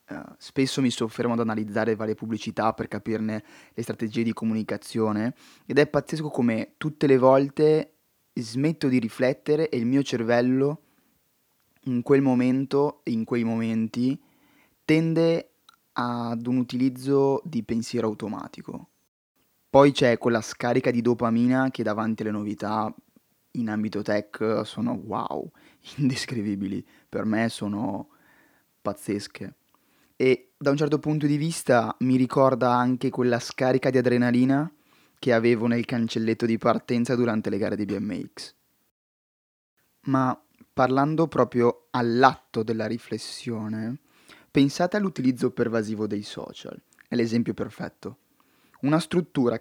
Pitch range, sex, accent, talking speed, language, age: 115-140 Hz, male, native, 125 wpm, Italian, 20-39